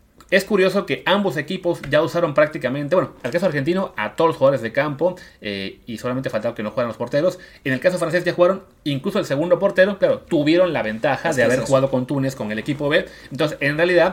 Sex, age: male, 30-49